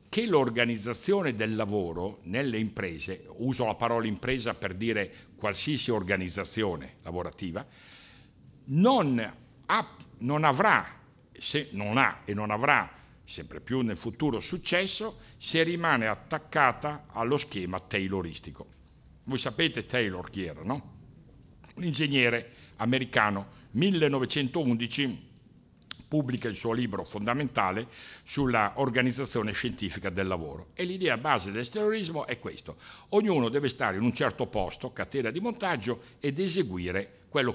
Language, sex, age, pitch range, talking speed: Italian, male, 60-79, 105-145 Hz, 120 wpm